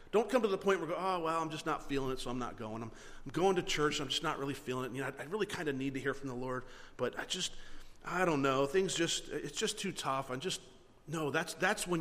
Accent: American